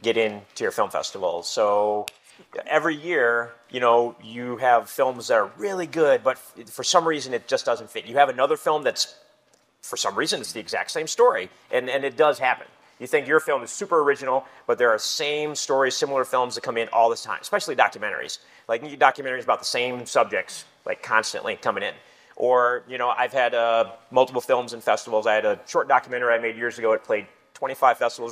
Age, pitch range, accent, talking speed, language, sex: 30-49, 115-160 Hz, American, 210 wpm, English, male